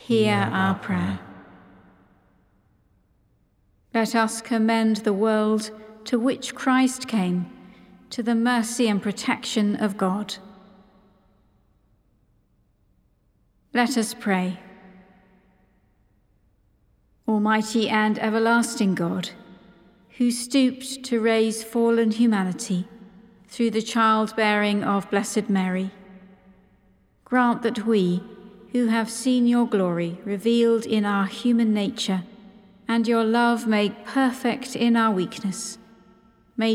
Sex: female